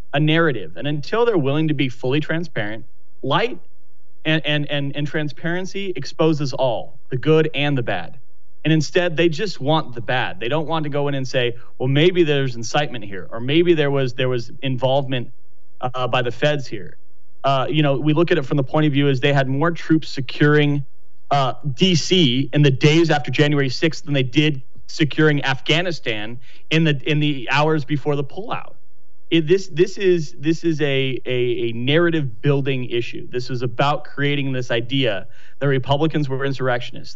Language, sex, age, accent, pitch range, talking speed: English, male, 30-49, American, 130-155 Hz, 185 wpm